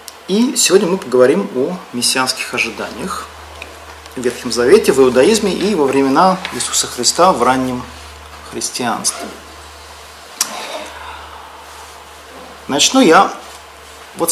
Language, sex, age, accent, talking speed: Russian, male, 40-59, native, 95 wpm